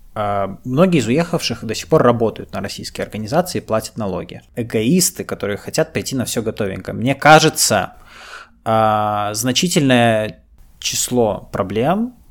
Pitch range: 100-130 Hz